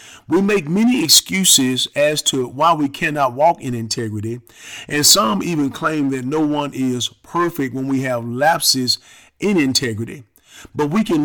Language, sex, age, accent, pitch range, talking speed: English, male, 40-59, American, 125-165 Hz, 160 wpm